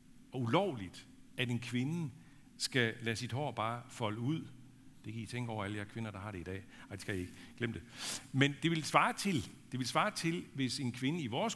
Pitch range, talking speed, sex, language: 110-150 Hz, 240 wpm, male, Danish